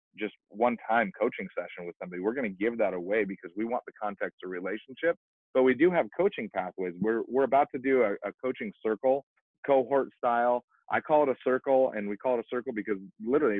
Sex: male